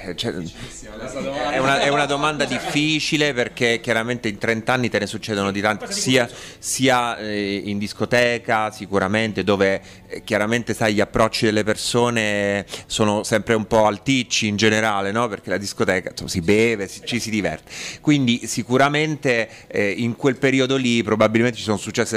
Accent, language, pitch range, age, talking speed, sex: native, Italian, 105-125 Hz, 30-49, 160 wpm, male